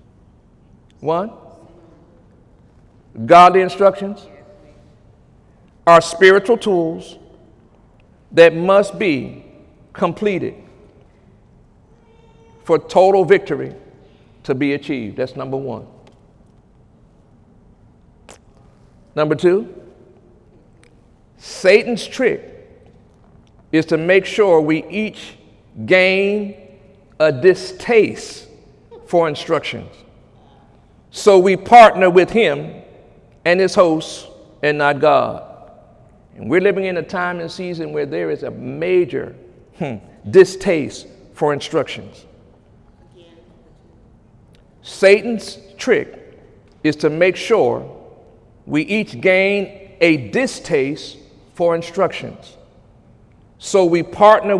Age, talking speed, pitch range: 50-69, 85 wpm, 145-200 Hz